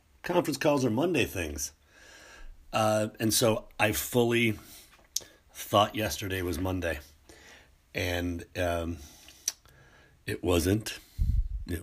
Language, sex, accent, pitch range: English, male, American, 85-120 Hz